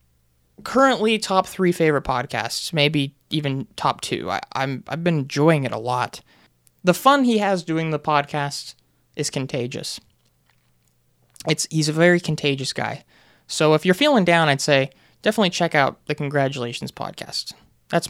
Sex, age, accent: male, 20-39, American